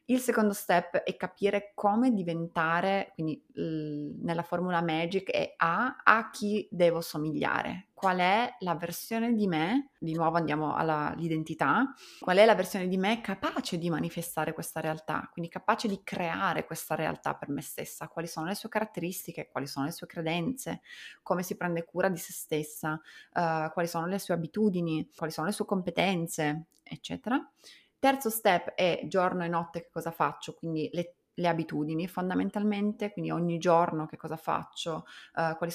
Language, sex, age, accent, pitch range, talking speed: Italian, female, 20-39, native, 160-195 Hz, 160 wpm